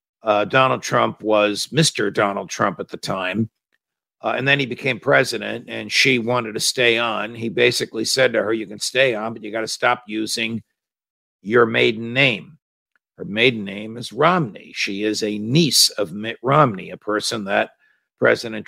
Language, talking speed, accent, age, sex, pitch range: English, 180 wpm, American, 50-69, male, 105-125 Hz